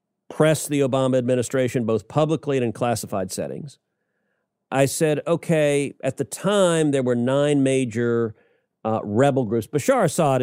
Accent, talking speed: American, 145 wpm